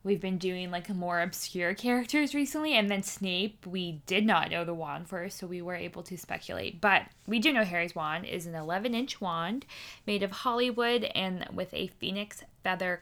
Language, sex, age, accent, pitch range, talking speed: English, female, 10-29, American, 180-220 Hz, 200 wpm